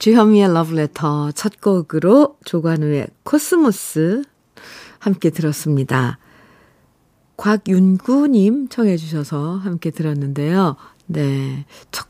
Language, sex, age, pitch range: Korean, female, 50-69, 155-220 Hz